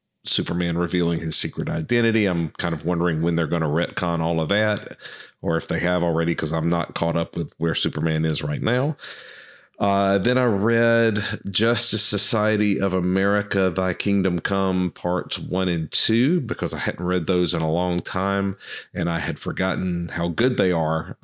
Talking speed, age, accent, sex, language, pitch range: 185 wpm, 40-59, American, male, English, 85-100 Hz